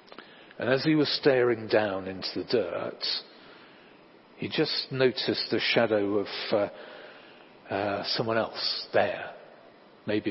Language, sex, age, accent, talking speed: English, male, 50-69, British, 120 wpm